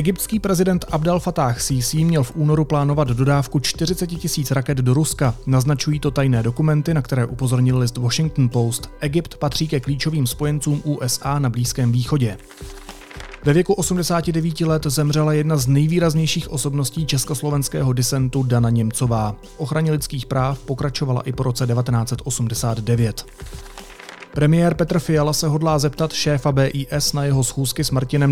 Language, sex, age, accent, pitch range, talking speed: Czech, male, 30-49, native, 125-155 Hz, 145 wpm